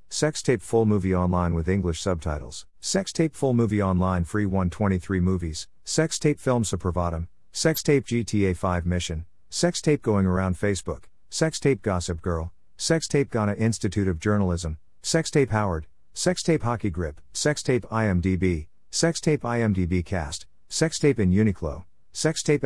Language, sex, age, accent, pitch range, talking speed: English, male, 50-69, American, 85-130 Hz, 125 wpm